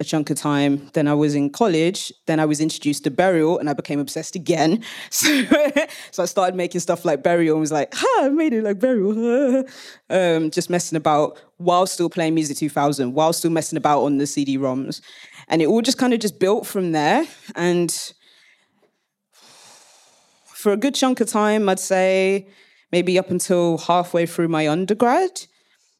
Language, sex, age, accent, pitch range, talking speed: English, female, 20-39, British, 155-215 Hz, 185 wpm